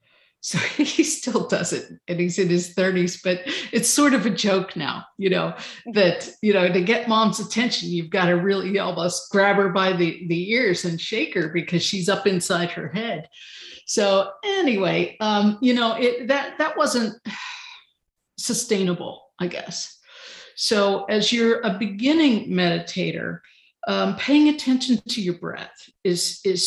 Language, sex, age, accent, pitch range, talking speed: English, female, 50-69, American, 180-245 Hz, 160 wpm